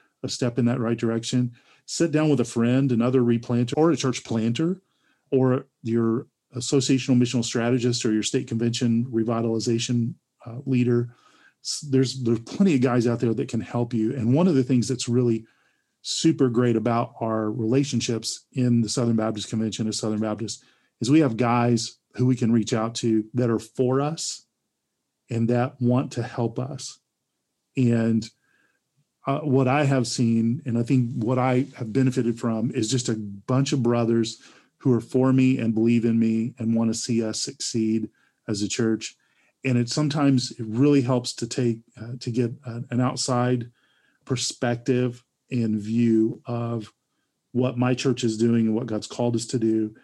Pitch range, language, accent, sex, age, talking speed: 115-130 Hz, English, American, male, 40-59, 175 wpm